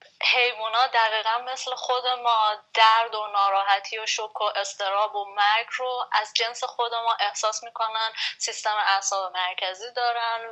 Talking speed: 150 wpm